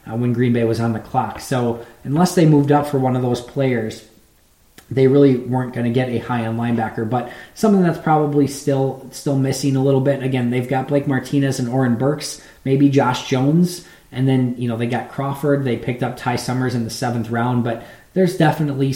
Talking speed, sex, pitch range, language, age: 210 wpm, male, 120-135 Hz, English, 20-39